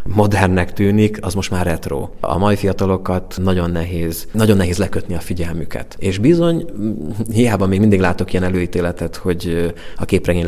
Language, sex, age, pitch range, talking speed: Hungarian, male, 30-49, 90-105 Hz, 155 wpm